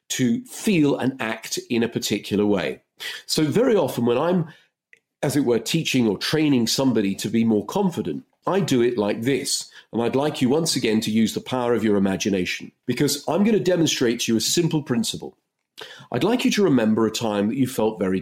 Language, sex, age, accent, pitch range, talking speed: English, male, 40-59, British, 110-150 Hz, 205 wpm